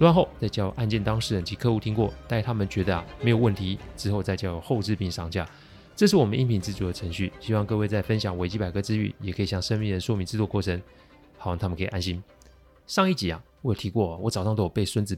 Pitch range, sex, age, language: 95-120 Hz, male, 30-49, Chinese